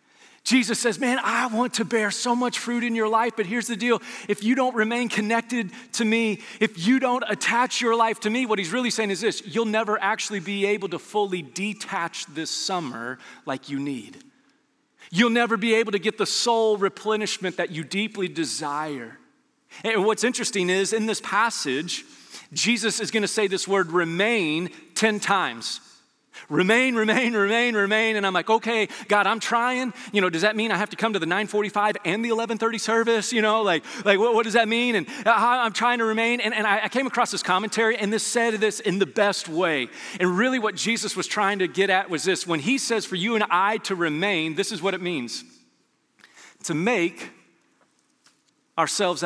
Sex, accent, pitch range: male, American, 195-235 Hz